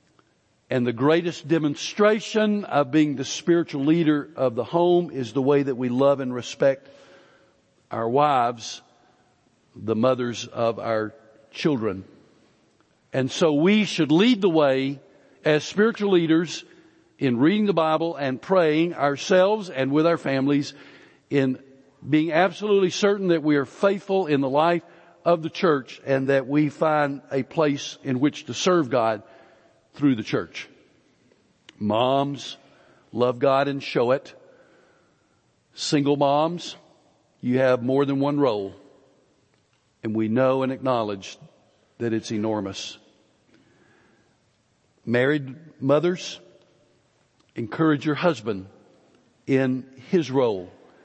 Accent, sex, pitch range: American, male, 130-165 Hz